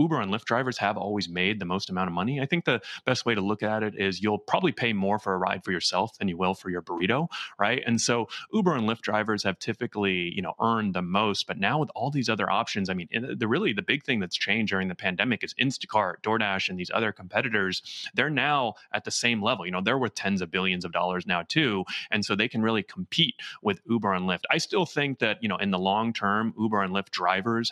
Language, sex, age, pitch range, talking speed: English, male, 30-49, 95-115 Hz, 255 wpm